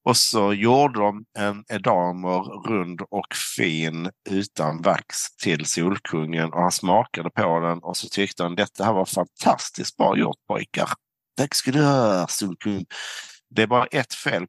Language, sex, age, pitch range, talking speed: Swedish, male, 50-69, 85-100 Hz, 155 wpm